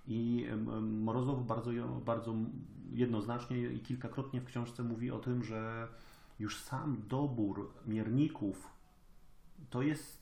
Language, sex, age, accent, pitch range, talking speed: Polish, male, 30-49, native, 110-130 Hz, 110 wpm